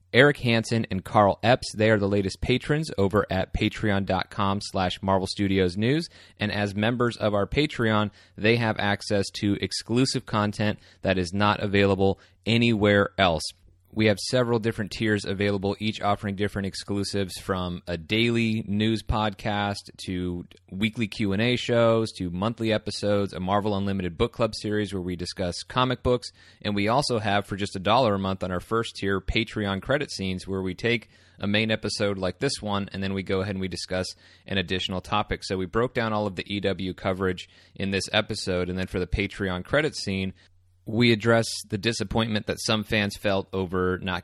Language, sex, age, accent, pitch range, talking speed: English, male, 30-49, American, 90-110 Hz, 180 wpm